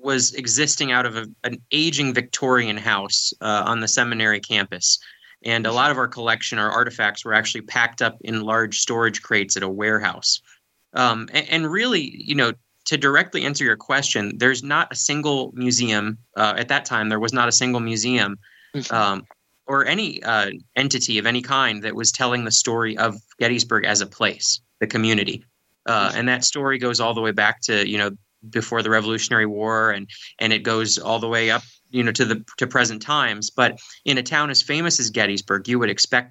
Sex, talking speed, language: male, 200 wpm, English